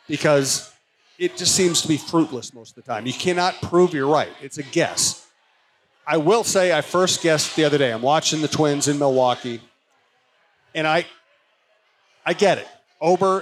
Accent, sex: American, male